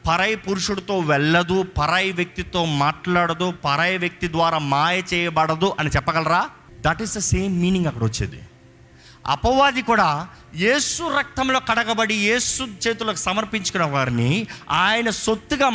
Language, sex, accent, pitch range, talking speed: Telugu, male, native, 145-225 Hz, 110 wpm